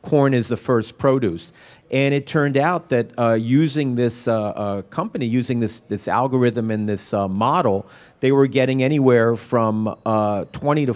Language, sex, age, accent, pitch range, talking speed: English, male, 40-59, American, 110-135 Hz, 175 wpm